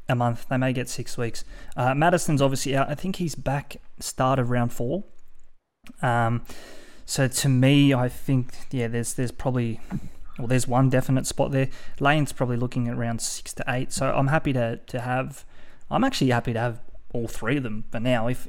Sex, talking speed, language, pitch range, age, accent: male, 200 wpm, English, 125-145 Hz, 20-39, Australian